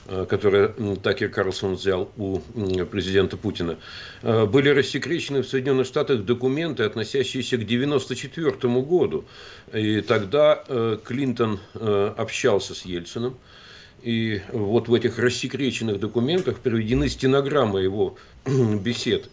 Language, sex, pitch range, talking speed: Russian, male, 105-130 Hz, 100 wpm